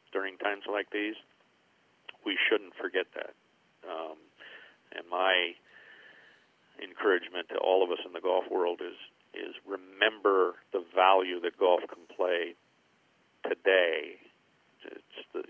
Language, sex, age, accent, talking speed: English, male, 50-69, American, 125 wpm